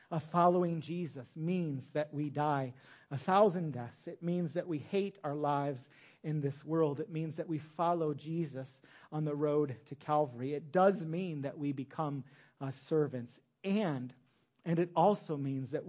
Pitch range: 140-175 Hz